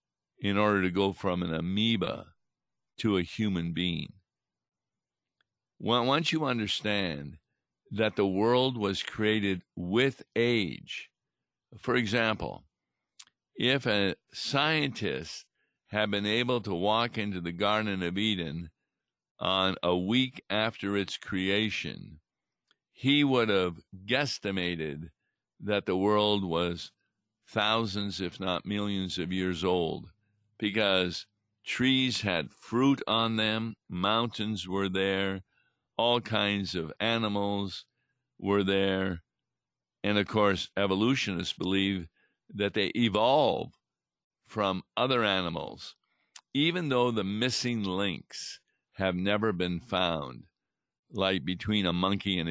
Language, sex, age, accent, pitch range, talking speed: English, male, 50-69, American, 90-110 Hz, 110 wpm